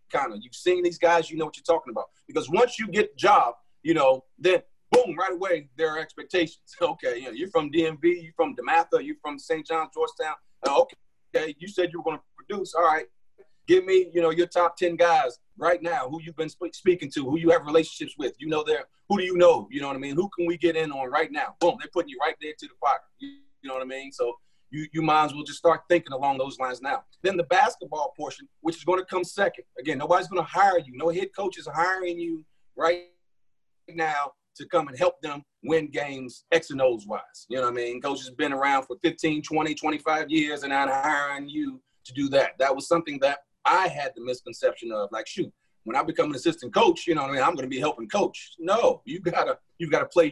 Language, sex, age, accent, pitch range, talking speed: English, male, 30-49, American, 150-185 Hz, 250 wpm